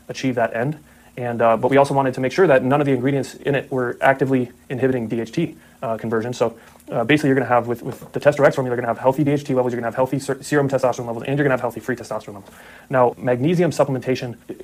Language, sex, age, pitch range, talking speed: English, male, 30-49, 120-140 Hz, 260 wpm